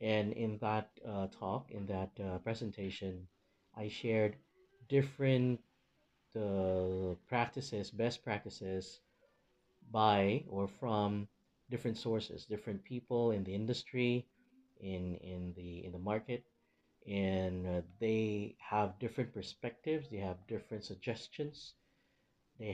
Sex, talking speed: male, 115 wpm